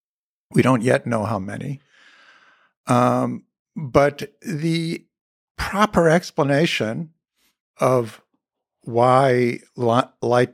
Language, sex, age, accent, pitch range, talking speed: English, male, 60-79, American, 120-160 Hz, 80 wpm